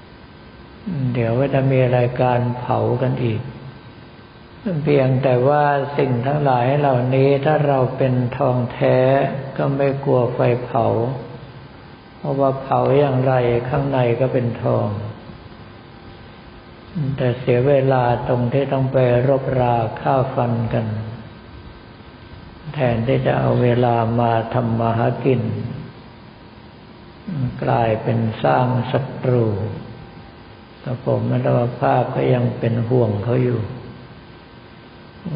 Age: 60-79